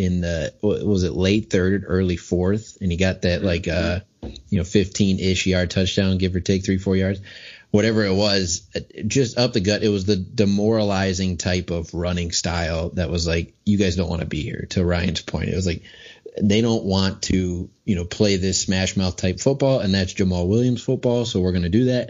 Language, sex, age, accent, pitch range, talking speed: English, male, 30-49, American, 90-110 Hz, 215 wpm